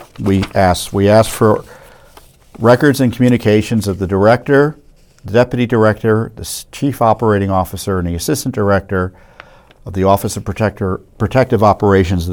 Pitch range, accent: 95-120 Hz, American